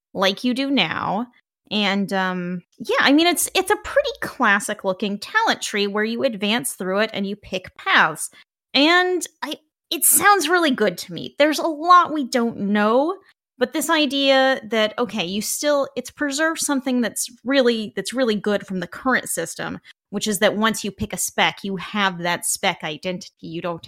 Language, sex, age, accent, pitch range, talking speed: English, female, 20-39, American, 200-280 Hz, 185 wpm